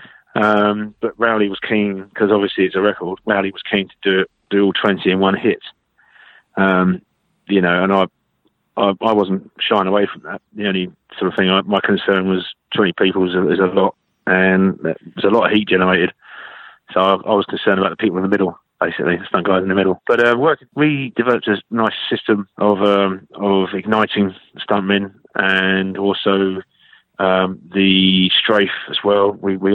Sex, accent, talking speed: male, British, 190 wpm